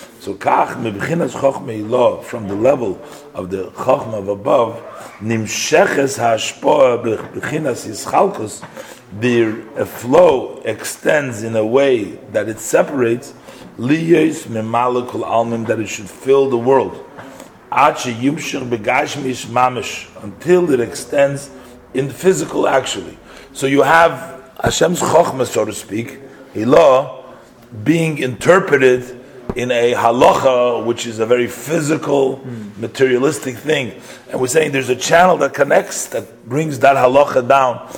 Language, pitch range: English, 120-140 Hz